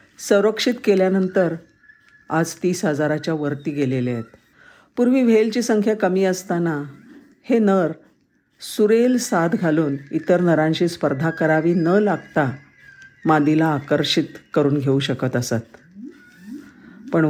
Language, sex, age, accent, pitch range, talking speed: Marathi, female, 50-69, native, 150-215 Hz, 110 wpm